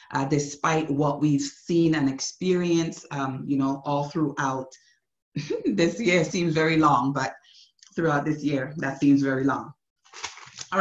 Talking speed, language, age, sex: 145 wpm, English, 30-49, female